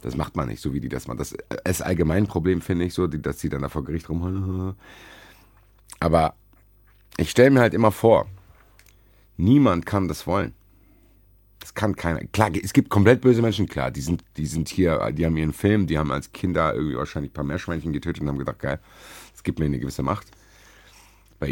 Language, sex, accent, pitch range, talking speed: German, male, German, 85-105 Hz, 205 wpm